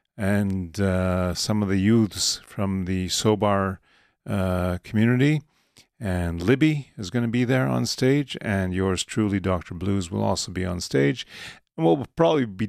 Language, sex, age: English, male, 40-59